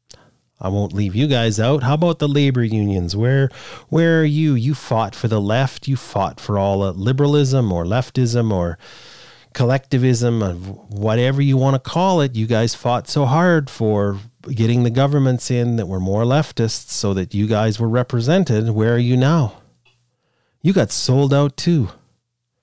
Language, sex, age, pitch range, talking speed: English, male, 30-49, 105-135 Hz, 175 wpm